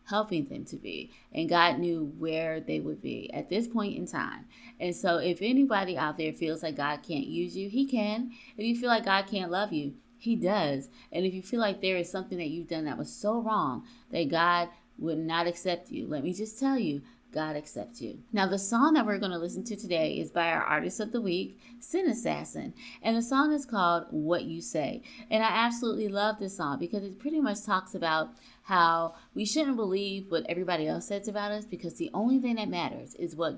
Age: 30-49